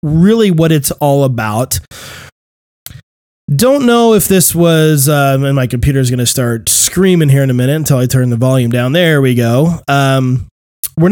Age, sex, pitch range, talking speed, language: 20-39, male, 125-160 Hz, 185 wpm, English